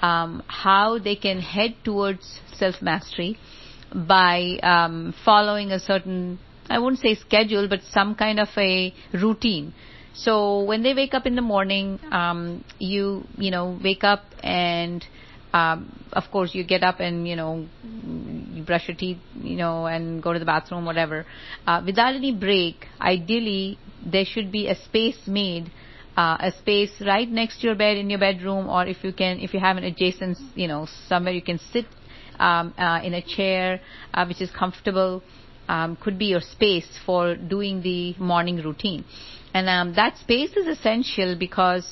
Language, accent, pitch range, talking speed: English, Indian, 175-210 Hz, 175 wpm